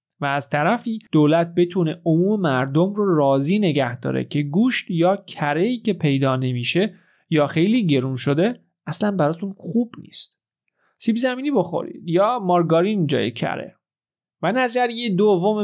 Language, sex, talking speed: Persian, male, 140 wpm